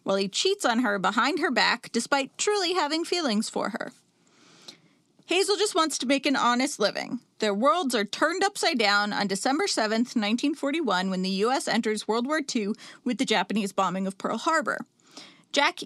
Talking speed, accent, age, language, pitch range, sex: 180 wpm, American, 30-49, English, 220-295 Hz, female